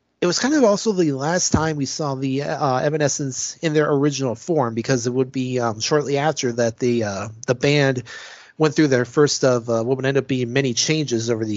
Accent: American